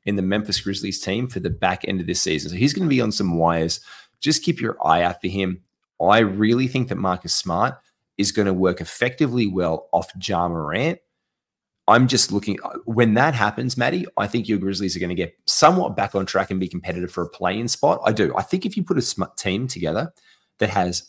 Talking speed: 235 wpm